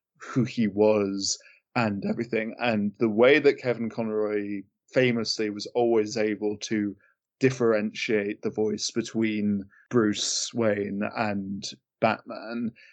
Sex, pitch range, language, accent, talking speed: male, 105-115 Hz, English, British, 110 wpm